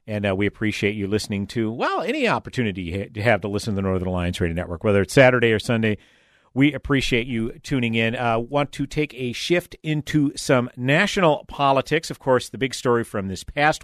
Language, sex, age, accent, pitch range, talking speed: English, male, 50-69, American, 110-140 Hz, 210 wpm